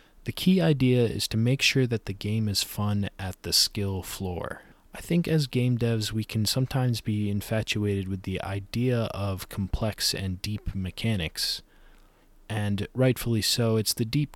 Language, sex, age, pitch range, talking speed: English, male, 20-39, 100-125 Hz, 165 wpm